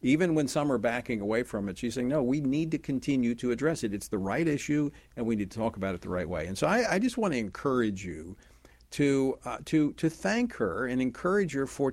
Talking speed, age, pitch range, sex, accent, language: 255 wpm, 50-69, 105-150 Hz, male, American, English